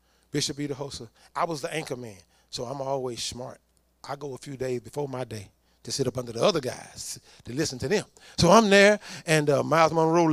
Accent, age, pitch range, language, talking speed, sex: American, 30-49, 135-200 Hz, English, 215 wpm, male